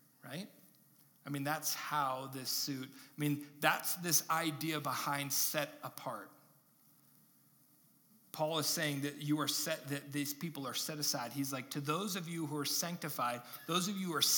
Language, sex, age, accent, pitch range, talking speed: English, male, 40-59, American, 145-180 Hz, 175 wpm